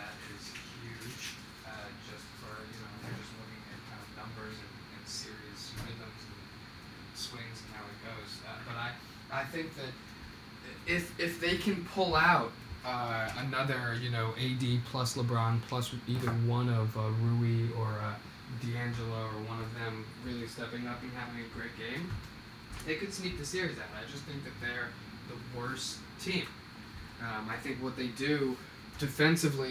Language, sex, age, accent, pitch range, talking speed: English, male, 20-39, American, 115-135 Hz, 175 wpm